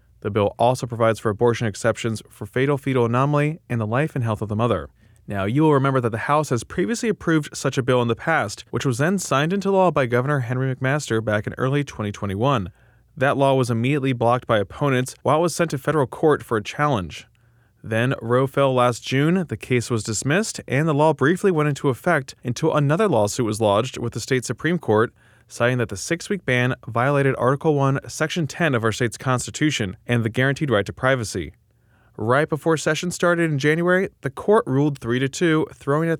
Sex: male